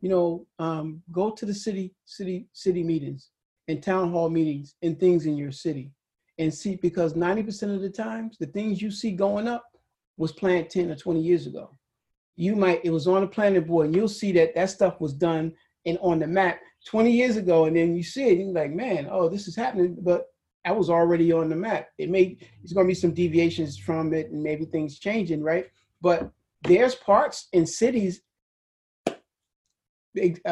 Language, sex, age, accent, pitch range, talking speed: English, male, 40-59, American, 160-195 Hz, 200 wpm